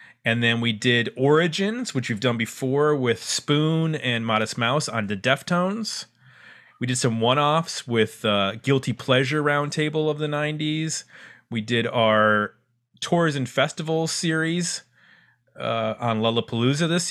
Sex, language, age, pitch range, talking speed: male, English, 30-49, 115-150 Hz, 140 wpm